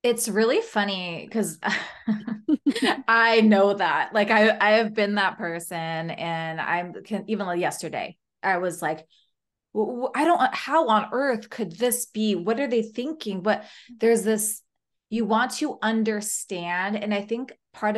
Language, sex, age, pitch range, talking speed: English, female, 20-39, 180-225 Hz, 150 wpm